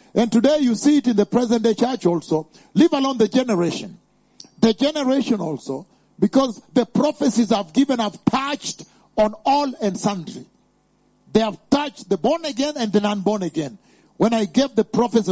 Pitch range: 205-265 Hz